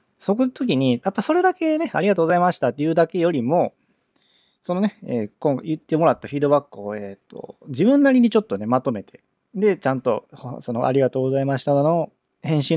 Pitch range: 115-175 Hz